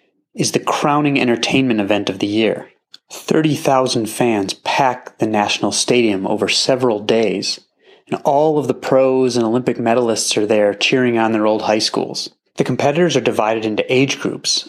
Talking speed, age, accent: 165 wpm, 30-49, American